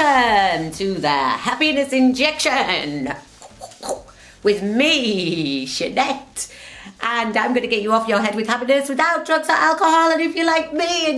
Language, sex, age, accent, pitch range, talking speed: English, female, 30-49, British, 165-270 Hz, 150 wpm